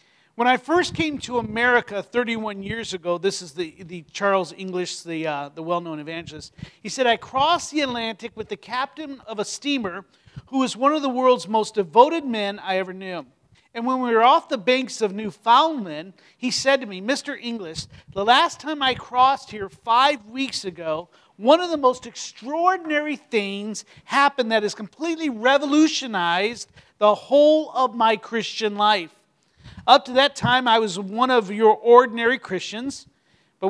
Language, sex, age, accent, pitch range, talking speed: English, male, 50-69, American, 205-270 Hz, 175 wpm